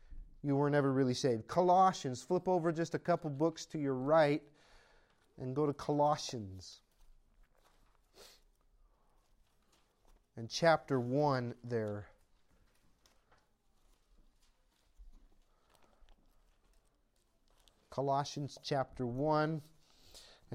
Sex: male